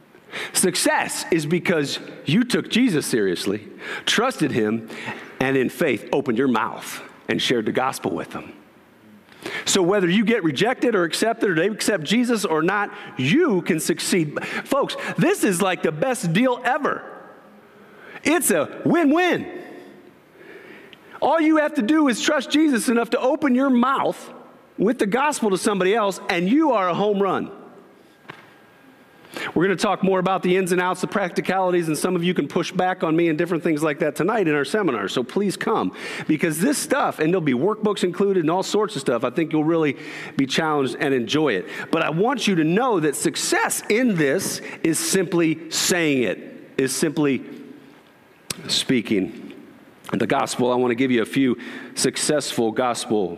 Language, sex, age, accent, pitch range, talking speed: English, male, 50-69, American, 160-245 Hz, 175 wpm